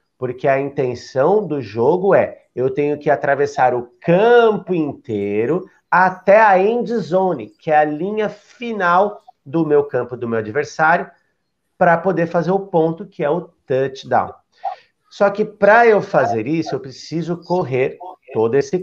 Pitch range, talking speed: 130-195 Hz, 155 wpm